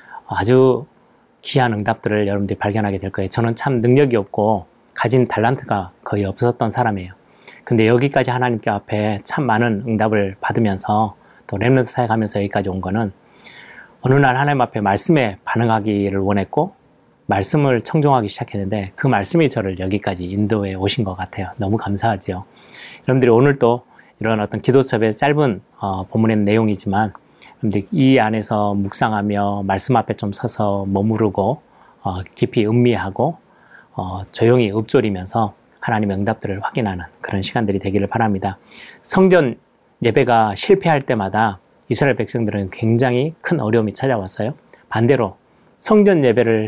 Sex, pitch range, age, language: male, 100-125 Hz, 30-49, Korean